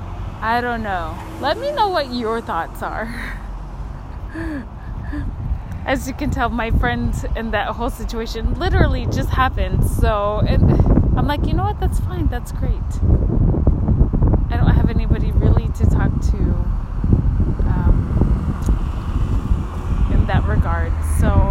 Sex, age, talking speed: female, 20-39, 130 wpm